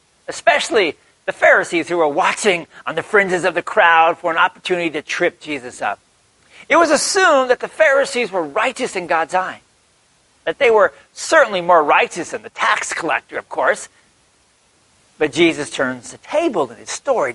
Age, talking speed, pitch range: 40-59, 175 wpm, 165-280 Hz